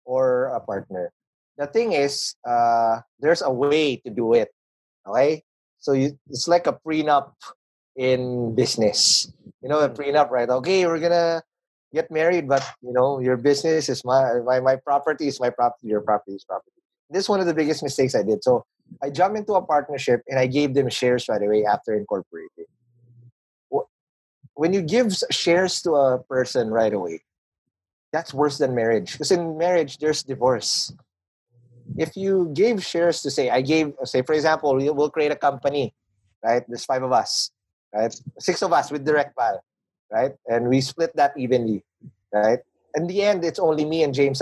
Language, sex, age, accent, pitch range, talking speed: Filipino, male, 30-49, native, 120-160 Hz, 180 wpm